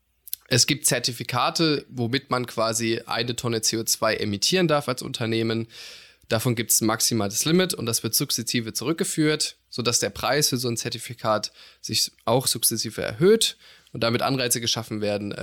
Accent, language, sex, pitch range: German, German, male, 115-140 Hz